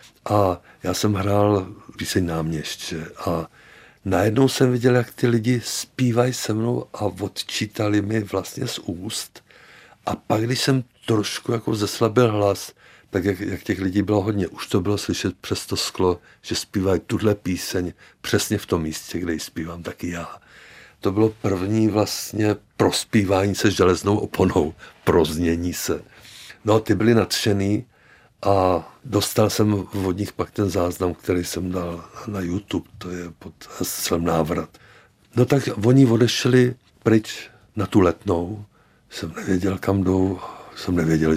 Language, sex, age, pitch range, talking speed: Czech, male, 60-79, 90-110 Hz, 150 wpm